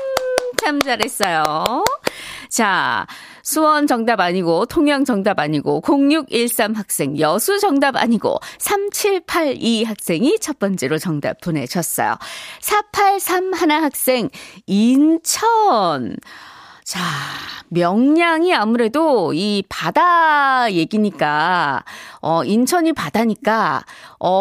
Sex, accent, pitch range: female, native, 200-320 Hz